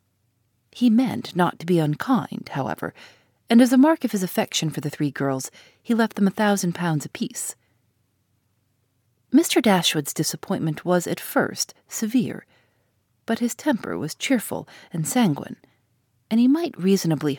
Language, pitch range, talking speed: English, 130-210 Hz, 150 wpm